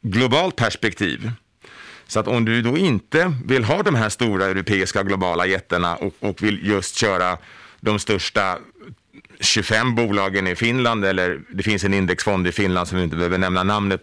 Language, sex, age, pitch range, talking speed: Swedish, male, 30-49, 100-120 Hz, 170 wpm